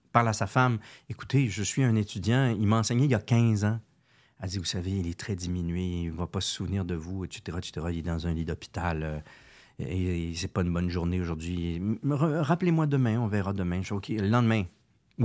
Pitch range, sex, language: 95-125 Hz, male, French